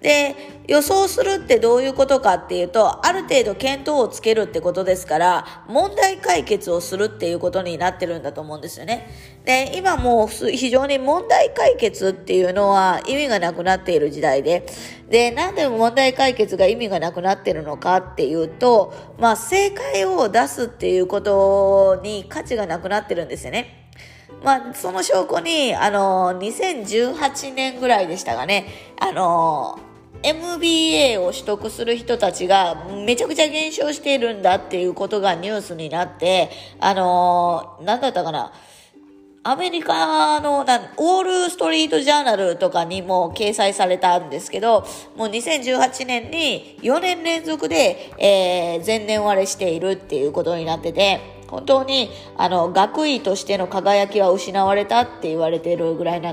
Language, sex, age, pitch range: Japanese, female, 20-39, 180-275 Hz